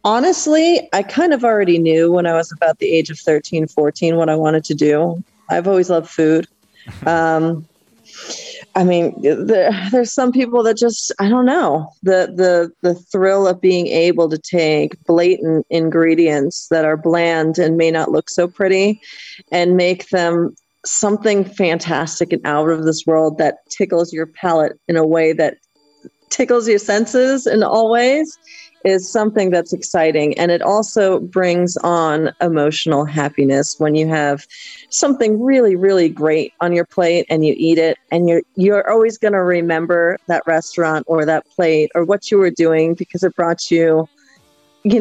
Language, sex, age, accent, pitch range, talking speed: Portuguese, female, 30-49, American, 160-200 Hz, 170 wpm